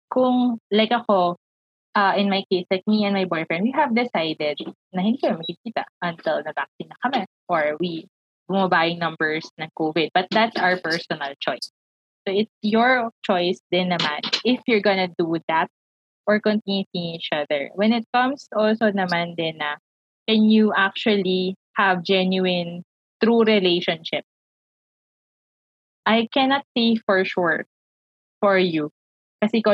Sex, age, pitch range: female, 20-39, 170-220 Hz